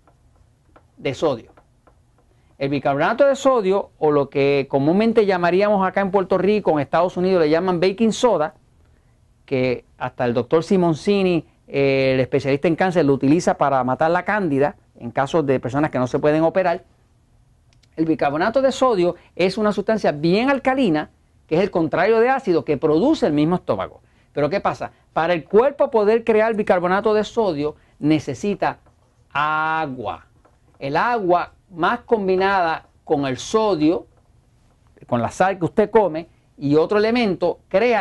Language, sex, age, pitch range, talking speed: Spanish, male, 40-59, 145-205 Hz, 150 wpm